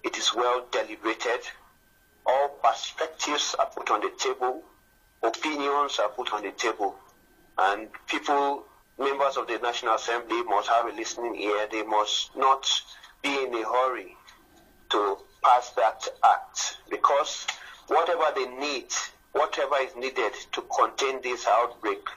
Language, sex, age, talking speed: English, male, 50-69, 140 wpm